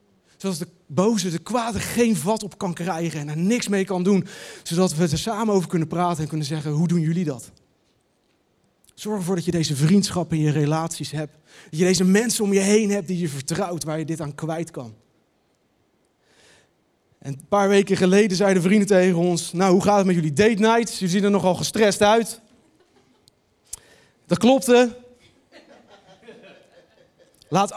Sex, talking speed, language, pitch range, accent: male, 180 wpm, Dutch, 130-185 Hz, Dutch